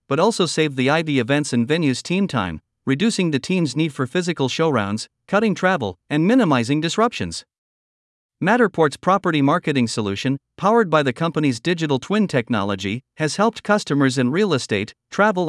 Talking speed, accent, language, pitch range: 155 wpm, American, English, 125-175 Hz